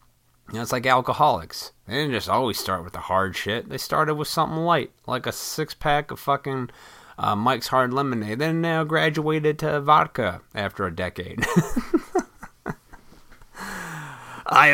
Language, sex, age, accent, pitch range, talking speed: English, male, 30-49, American, 105-150 Hz, 150 wpm